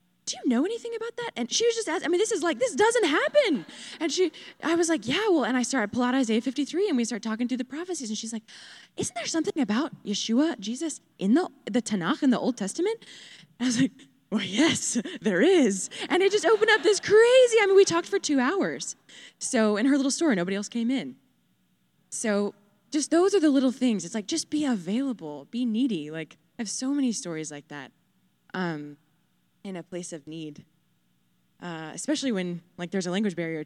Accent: American